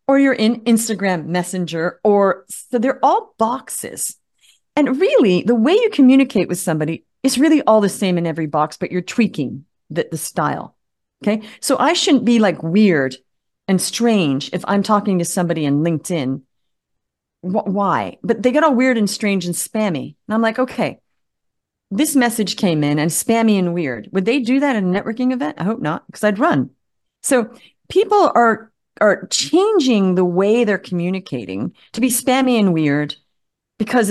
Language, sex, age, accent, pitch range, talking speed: English, female, 40-59, American, 180-255 Hz, 175 wpm